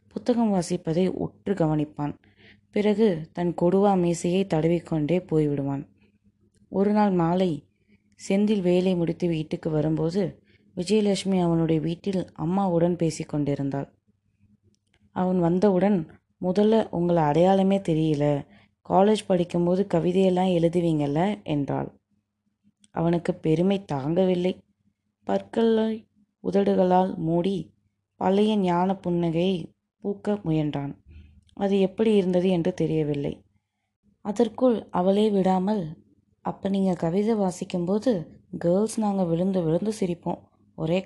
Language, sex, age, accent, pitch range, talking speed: Tamil, female, 20-39, native, 140-195 Hz, 90 wpm